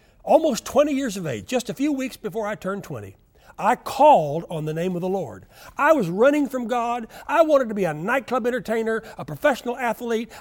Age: 60-79